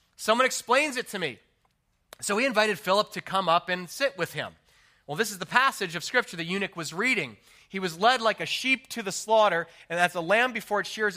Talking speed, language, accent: 230 wpm, English, American